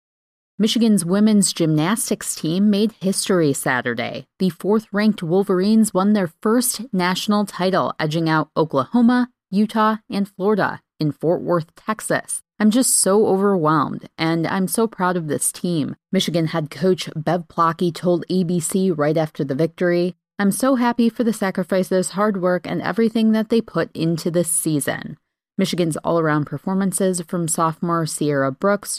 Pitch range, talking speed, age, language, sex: 165-205 Hz, 145 wpm, 30-49, English, female